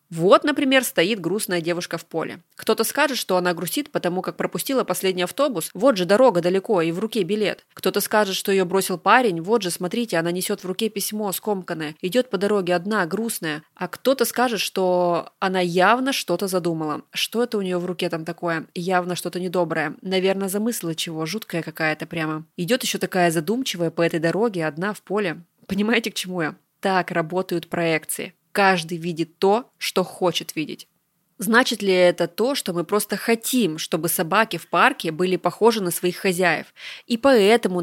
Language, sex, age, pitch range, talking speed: Russian, female, 20-39, 170-210 Hz, 180 wpm